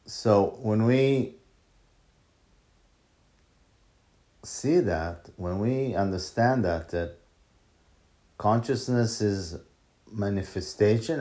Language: English